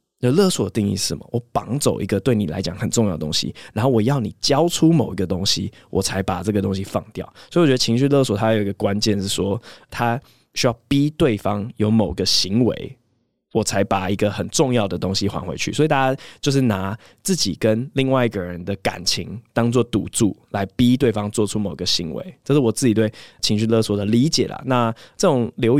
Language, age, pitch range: Chinese, 20-39, 100-125 Hz